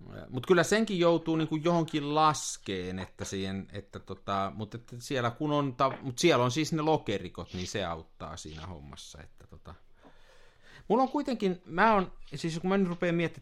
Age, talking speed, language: 50-69, 170 wpm, Finnish